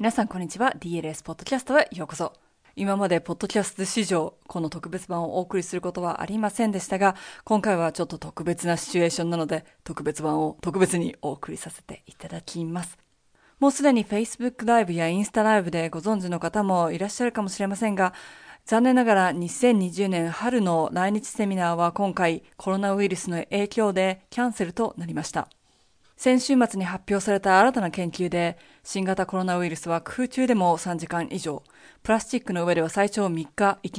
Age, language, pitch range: 20-39, Japanese, 175-215 Hz